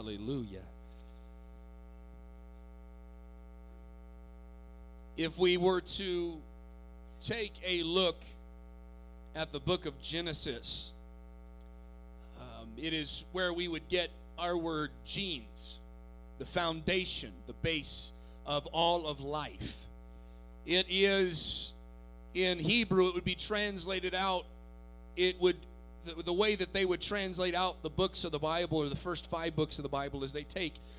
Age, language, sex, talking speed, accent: 40-59, English, male, 130 wpm, American